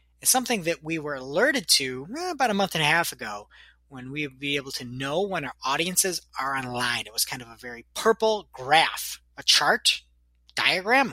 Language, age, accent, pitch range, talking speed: English, 30-49, American, 125-165 Hz, 195 wpm